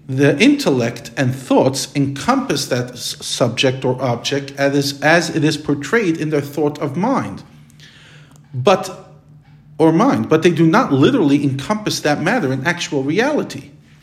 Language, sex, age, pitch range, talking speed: English, male, 50-69, 140-170 Hz, 135 wpm